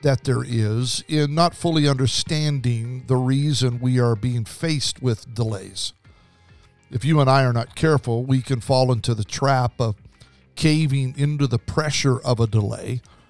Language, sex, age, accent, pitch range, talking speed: English, male, 50-69, American, 115-145 Hz, 165 wpm